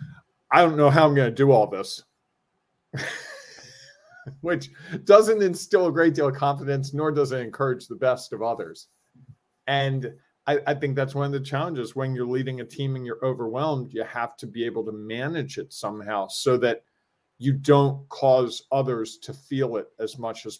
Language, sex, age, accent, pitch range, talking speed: English, male, 40-59, American, 125-145 Hz, 185 wpm